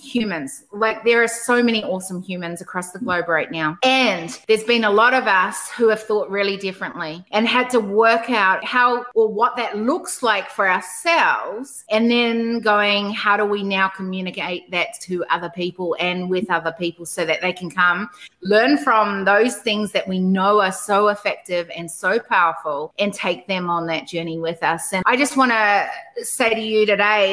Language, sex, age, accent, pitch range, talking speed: English, female, 30-49, Australian, 190-230 Hz, 195 wpm